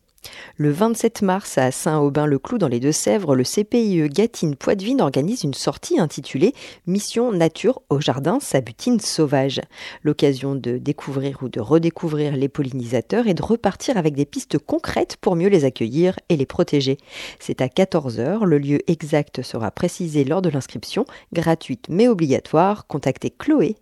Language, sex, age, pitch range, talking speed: French, female, 40-59, 135-190 Hz, 160 wpm